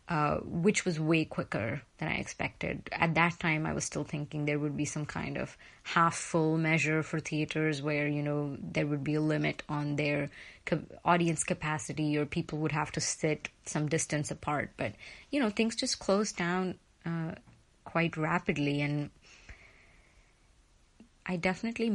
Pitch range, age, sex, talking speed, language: 150-175 Hz, 30-49, female, 160 wpm, Spanish